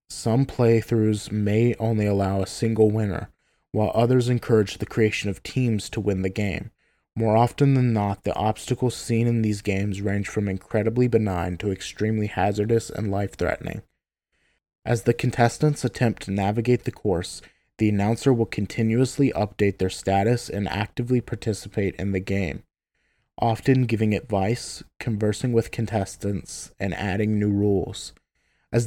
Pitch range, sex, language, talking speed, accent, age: 100-115 Hz, male, English, 145 wpm, American, 20-39